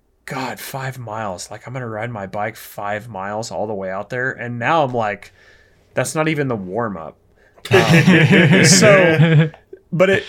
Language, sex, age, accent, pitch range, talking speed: English, male, 20-39, American, 110-140 Hz, 170 wpm